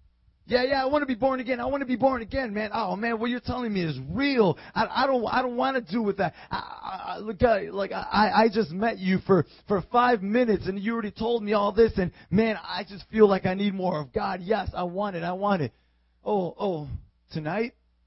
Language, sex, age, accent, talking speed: English, male, 30-49, American, 250 wpm